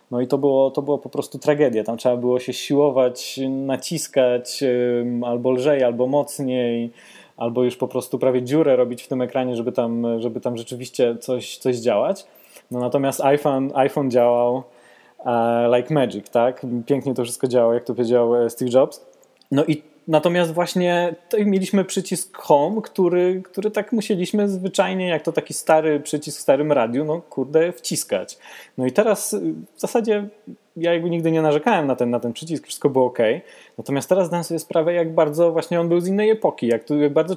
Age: 20-39